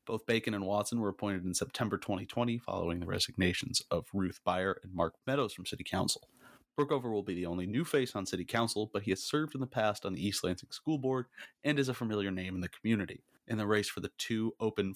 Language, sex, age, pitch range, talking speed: English, male, 30-49, 95-115 Hz, 235 wpm